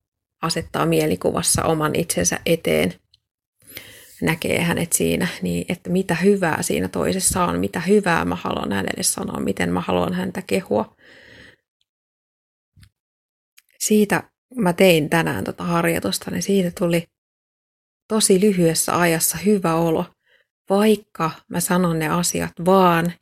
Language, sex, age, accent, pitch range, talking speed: Finnish, female, 30-49, native, 155-195 Hz, 115 wpm